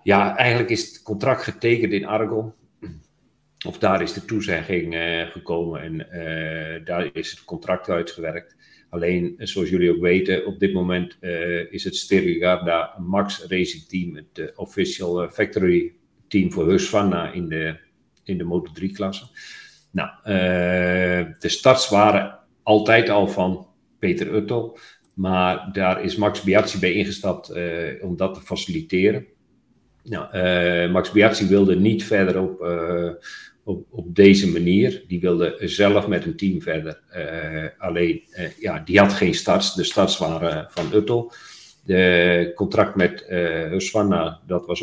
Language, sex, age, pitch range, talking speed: English, male, 50-69, 90-105 Hz, 155 wpm